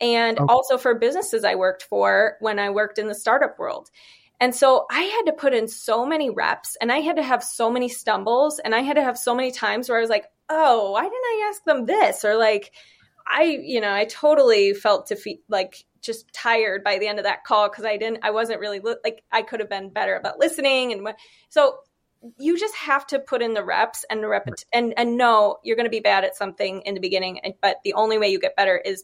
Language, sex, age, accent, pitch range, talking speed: English, female, 20-39, American, 210-270 Hz, 240 wpm